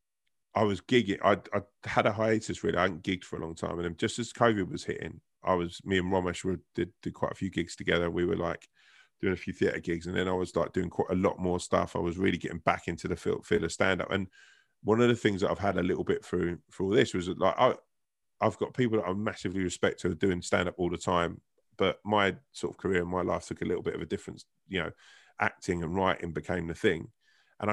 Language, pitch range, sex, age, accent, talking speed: English, 85-105 Hz, male, 20-39, British, 265 wpm